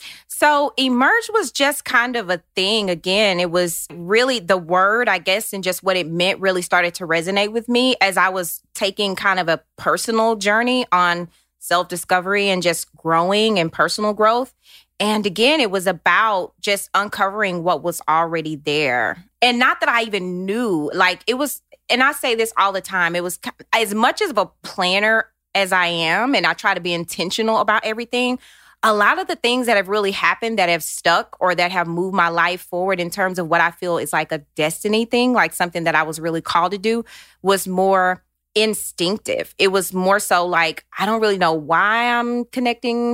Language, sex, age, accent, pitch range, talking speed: English, female, 20-39, American, 175-225 Hz, 200 wpm